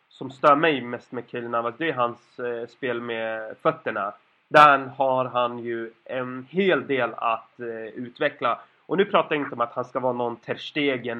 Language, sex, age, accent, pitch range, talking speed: Swedish, male, 30-49, native, 120-145 Hz, 175 wpm